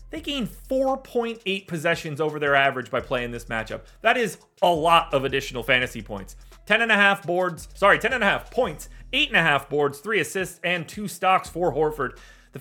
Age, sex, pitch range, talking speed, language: 30-49, male, 150-215 Hz, 205 wpm, English